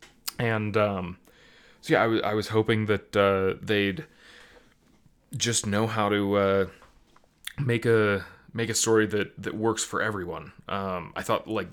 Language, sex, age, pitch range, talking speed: English, male, 20-39, 100-130 Hz, 155 wpm